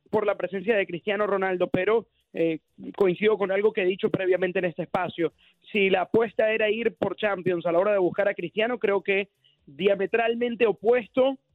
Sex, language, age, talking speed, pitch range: male, Spanish, 30-49, 185 wpm, 180-220 Hz